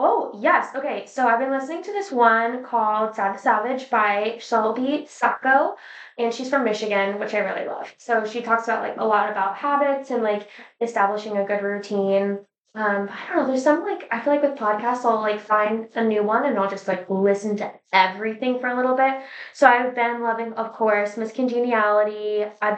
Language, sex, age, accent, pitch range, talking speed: English, female, 10-29, American, 200-245 Hz, 205 wpm